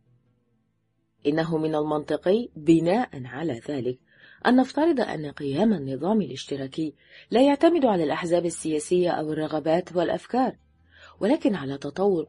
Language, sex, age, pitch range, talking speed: Arabic, female, 30-49, 135-190 Hz, 110 wpm